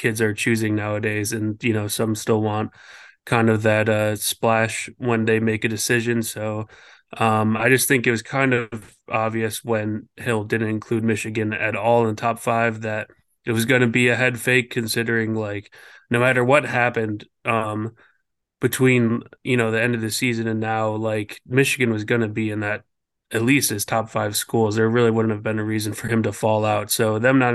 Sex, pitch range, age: male, 110-120 Hz, 20-39